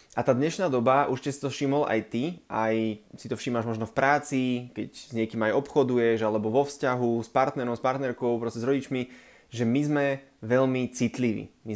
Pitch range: 120-135 Hz